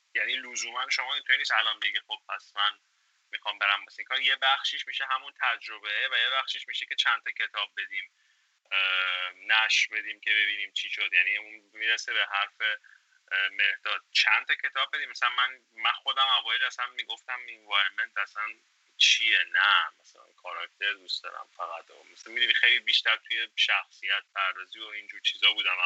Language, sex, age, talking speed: Persian, male, 30-49, 165 wpm